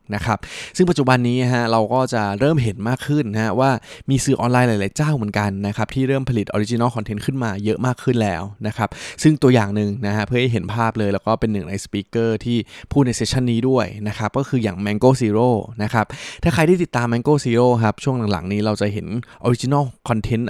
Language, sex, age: Thai, male, 20-39